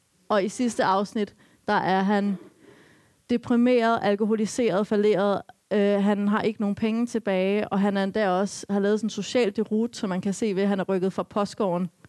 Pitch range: 185-230 Hz